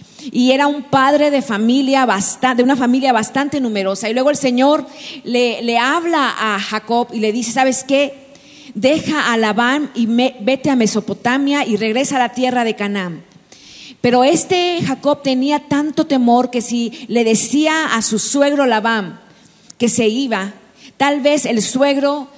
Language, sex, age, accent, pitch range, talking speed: Spanish, female, 40-59, Mexican, 225-275 Hz, 165 wpm